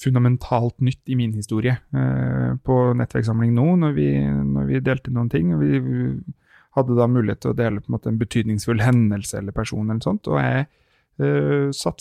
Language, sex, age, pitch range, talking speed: English, male, 30-49, 115-135 Hz, 185 wpm